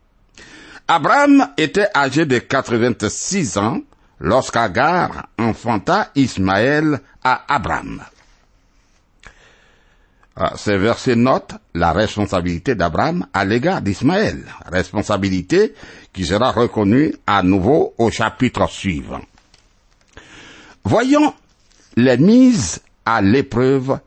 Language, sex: French, male